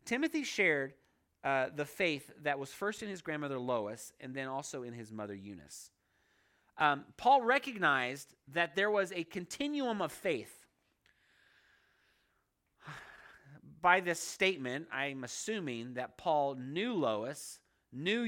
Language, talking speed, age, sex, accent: English, 130 wpm, 30-49, male, American